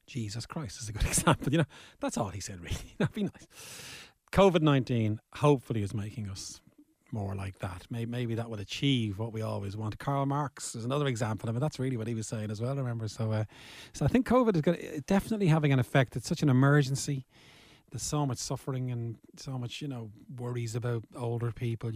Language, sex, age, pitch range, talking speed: English, male, 30-49, 110-140 Hz, 215 wpm